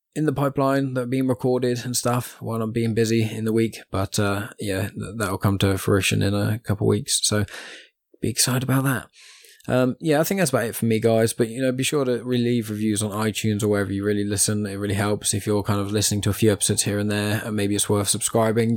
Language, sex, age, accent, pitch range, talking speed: English, male, 10-29, British, 105-120 Hz, 255 wpm